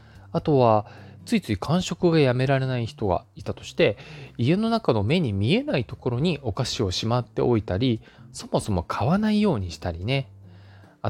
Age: 20-39